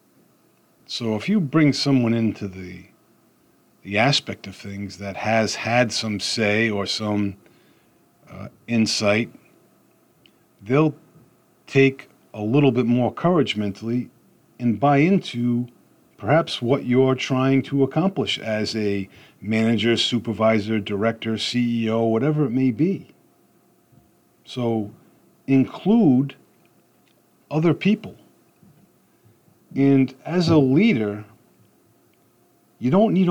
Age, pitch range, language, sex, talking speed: 50-69, 105-135 Hz, English, male, 105 wpm